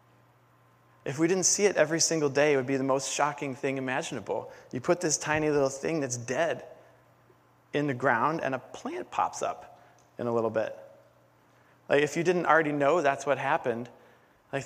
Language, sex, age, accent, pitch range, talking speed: English, male, 20-39, American, 125-165 Hz, 190 wpm